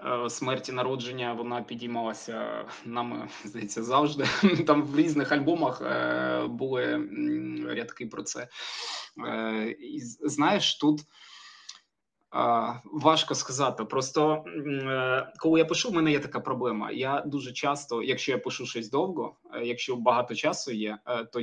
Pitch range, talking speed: 120-150 Hz, 115 wpm